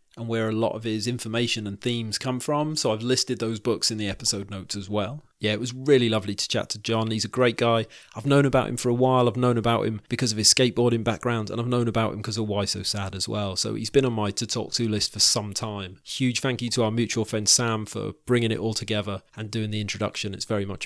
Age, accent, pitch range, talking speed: 30-49, British, 105-125 Hz, 275 wpm